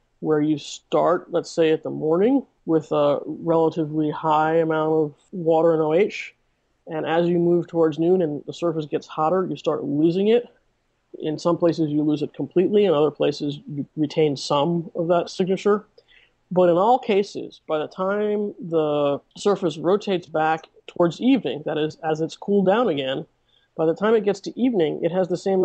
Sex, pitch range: male, 150-180 Hz